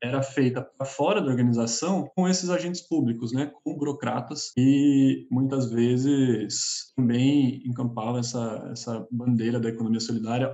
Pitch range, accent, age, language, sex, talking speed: 115-145 Hz, Brazilian, 20-39, Portuguese, male, 135 wpm